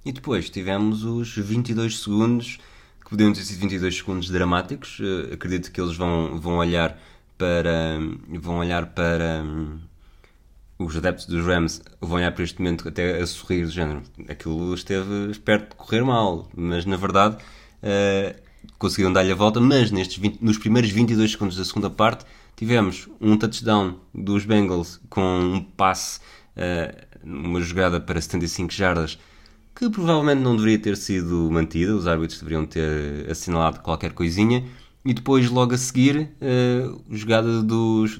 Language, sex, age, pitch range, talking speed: Portuguese, male, 20-39, 90-115 Hz, 145 wpm